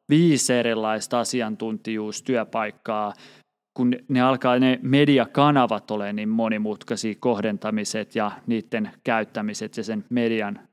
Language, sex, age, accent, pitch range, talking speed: Finnish, male, 30-49, native, 115-150 Hz, 105 wpm